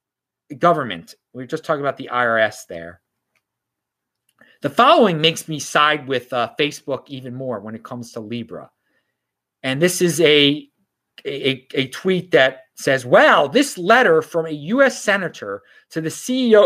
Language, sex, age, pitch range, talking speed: English, male, 30-49, 140-220 Hz, 150 wpm